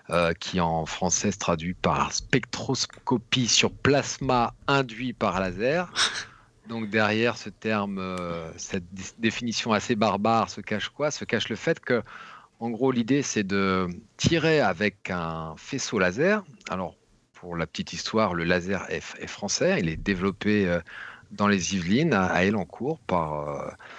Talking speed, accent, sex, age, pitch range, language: 165 wpm, French, male, 40-59, 90-115 Hz, French